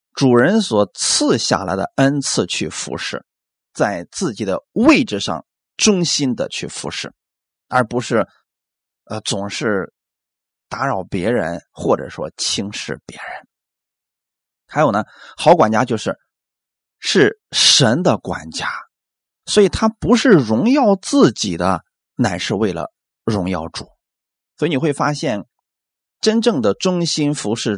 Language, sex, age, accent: Chinese, male, 20-39, native